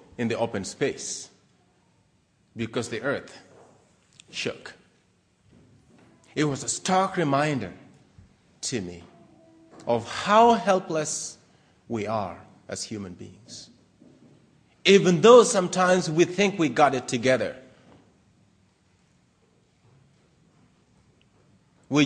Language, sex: English, male